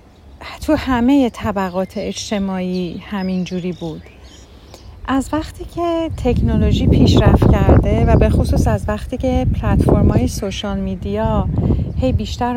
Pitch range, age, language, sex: 180-255 Hz, 40-59, Persian, female